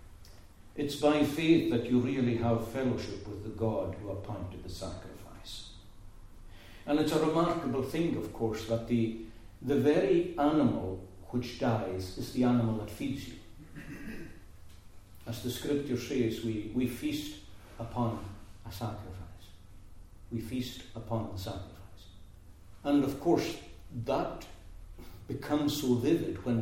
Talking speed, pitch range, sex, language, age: 130 wpm, 100-130 Hz, male, English, 60-79